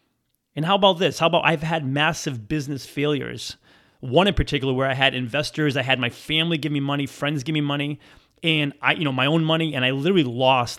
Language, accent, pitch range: English, American, 130-180 Hz